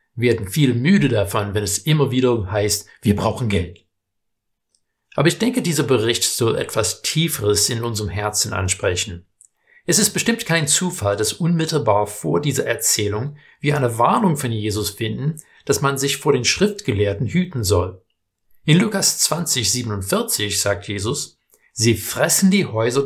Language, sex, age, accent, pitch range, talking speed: German, male, 60-79, German, 105-145 Hz, 155 wpm